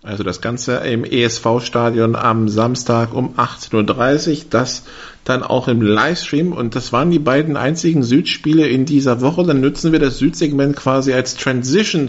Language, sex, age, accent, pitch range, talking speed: German, male, 50-69, German, 125-160 Hz, 165 wpm